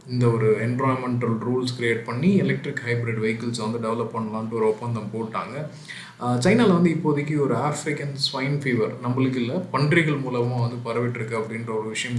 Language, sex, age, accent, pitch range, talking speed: Tamil, male, 20-39, native, 110-135 Hz, 155 wpm